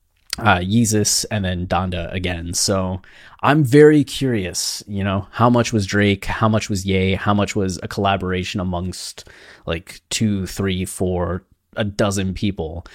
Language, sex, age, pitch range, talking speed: English, male, 20-39, 90-115 Hz, 155 wpm